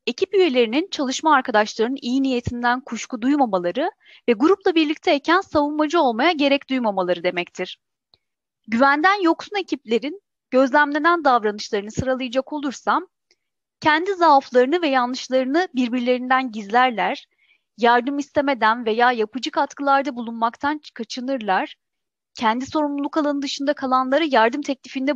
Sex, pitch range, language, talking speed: female, 235-305 Hz, Turkish, 105 wpm